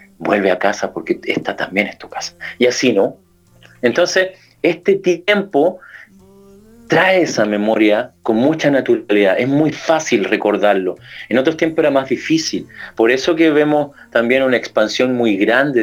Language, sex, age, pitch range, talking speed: Spanish, male, 40-59, 110-175 Hz, 150 wpm